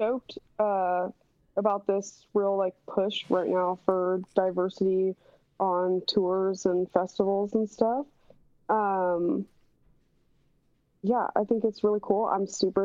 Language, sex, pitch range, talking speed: English, female, 185-235 Hz, 120 wpm